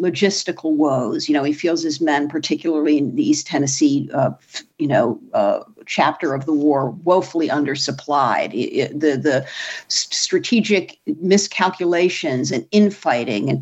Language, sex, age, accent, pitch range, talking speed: English, female, 50-69, American, 160-250 Hz, 140 wpm